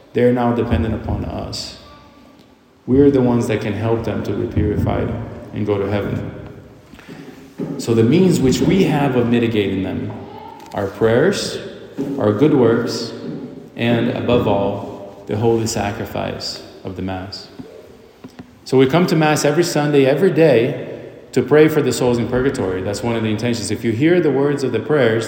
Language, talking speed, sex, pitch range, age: English, 170 wpm, male, 105-130 Hz, 30-49